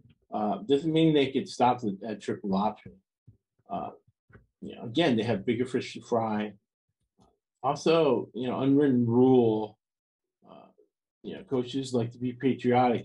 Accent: American